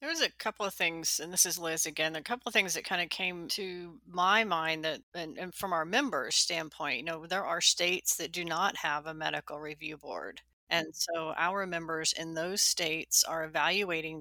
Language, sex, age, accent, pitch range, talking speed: English, female, 30-49, American, 155-175 Hz, 215 wpm